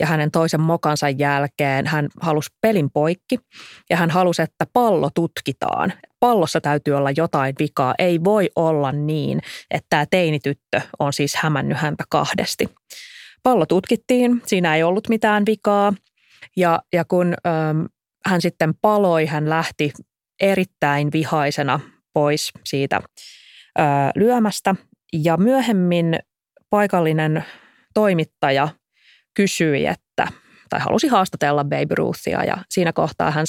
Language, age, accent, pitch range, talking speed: Finnish, 20-39, native, 150-180 Hz, 120 wpm